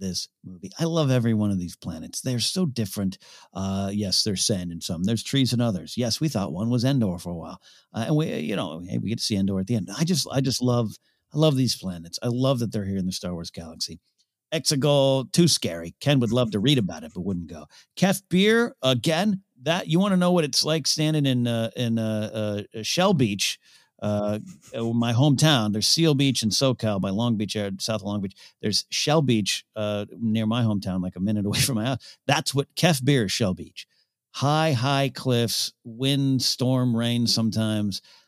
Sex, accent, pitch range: male, American, 100-135 Hz